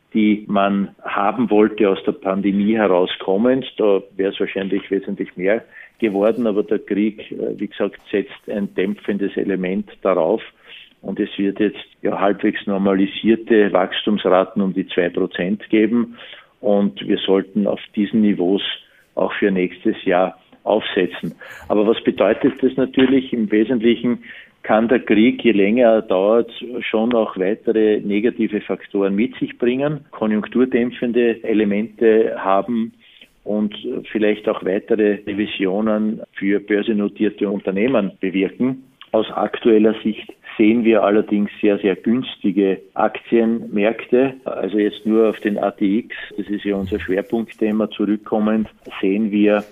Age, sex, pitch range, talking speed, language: 50-69, male, 100-110 Hz, 130 wpm, German